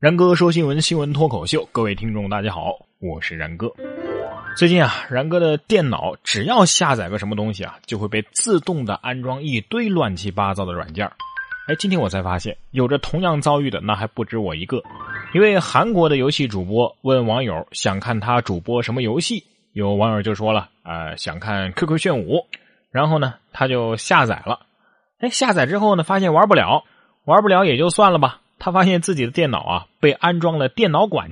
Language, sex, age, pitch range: Chinese, male, 20-39, 110-175 Hz